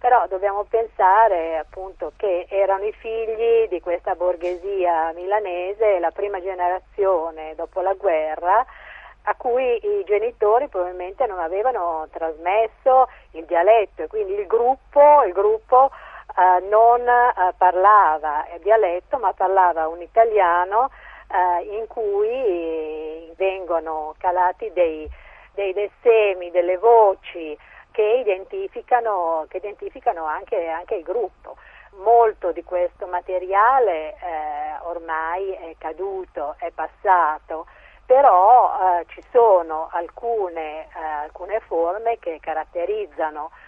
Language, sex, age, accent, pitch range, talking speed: Italian, female, 50-69, native, 165-225 Hz, 115 wpm